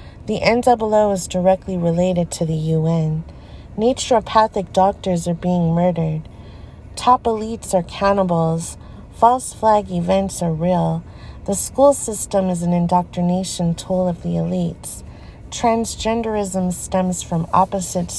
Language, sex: English, female